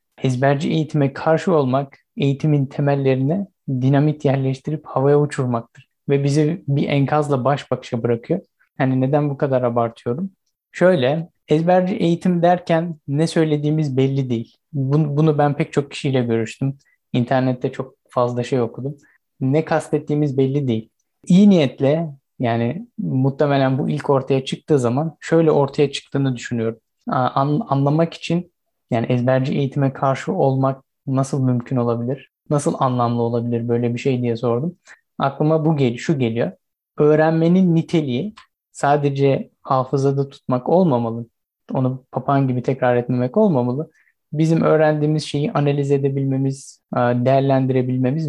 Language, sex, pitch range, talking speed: Turkish, male, 130-150 Hz, 125 wpm